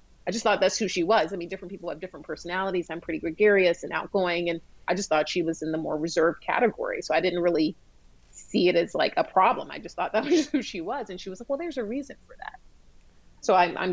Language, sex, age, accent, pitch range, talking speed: English, female, 30-49, American, 165-205 Hz, 265 wpm